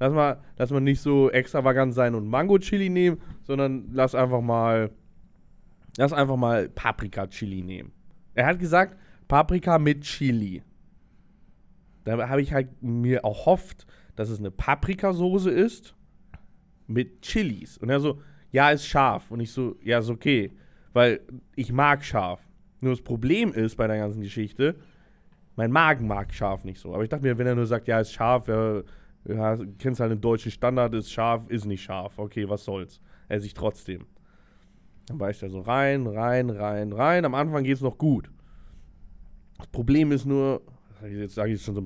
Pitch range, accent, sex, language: 105-140 Hz, German, male, English